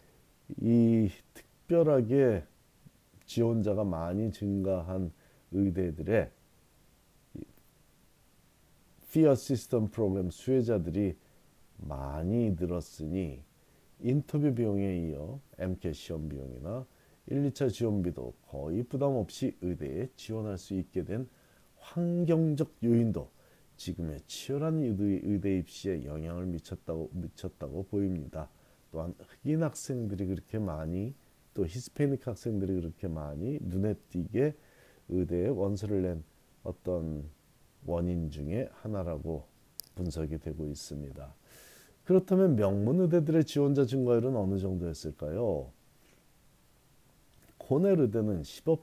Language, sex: Korean, male